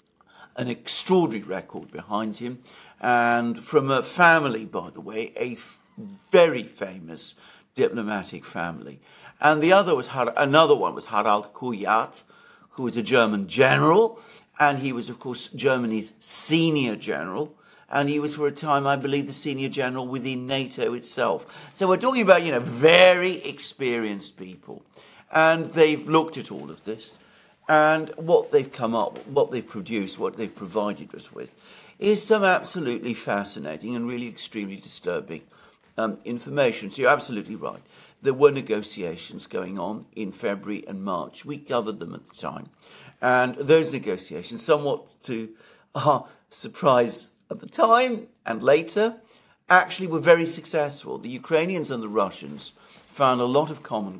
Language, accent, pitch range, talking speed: English, British, 120-165 Hz, 155 wpm